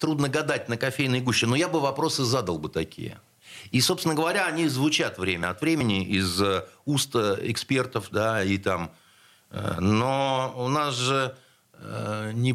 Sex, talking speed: male, 150 wpm